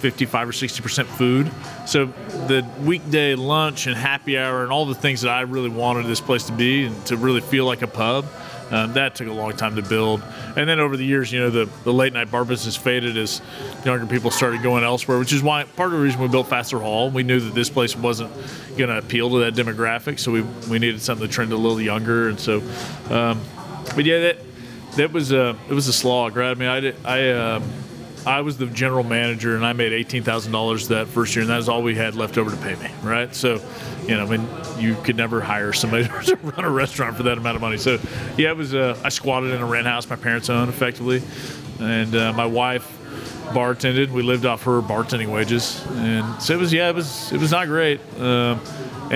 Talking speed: 240 wpm